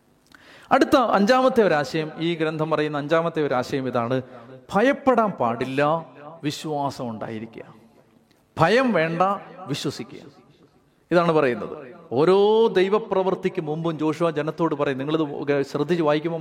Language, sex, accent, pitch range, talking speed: Malayalam, male, native, 150-200 Hz, 100 wpm